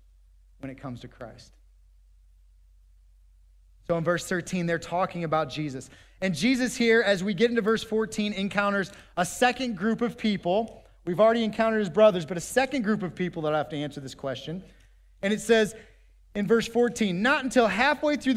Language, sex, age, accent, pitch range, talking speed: English, male, 30-49, American, 135-225 Hz, 185 wpm